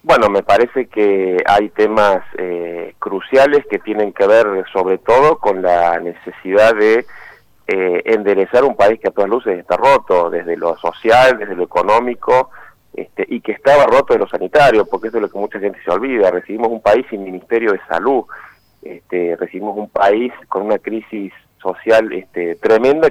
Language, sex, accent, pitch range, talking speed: Spanish, male, Argentinian, 100-135 Hz, 170 wpm